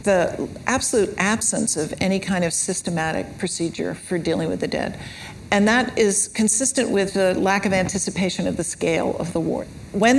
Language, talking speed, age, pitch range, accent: English, 175 wpm, 60-79, 170-195 Hz, American